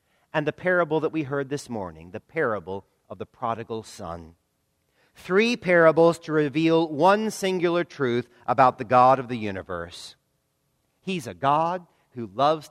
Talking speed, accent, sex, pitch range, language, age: 150 wpm, American, male, 120-175 Hz, English, 50-69